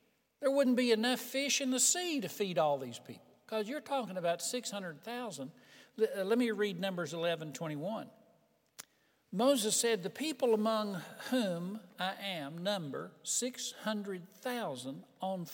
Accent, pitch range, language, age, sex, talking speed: American, 170-250 Hz, English, 60-79, male, 140 wpm